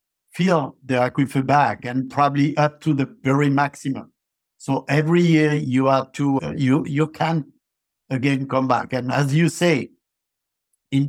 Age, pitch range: 60-79, 125-155 Hz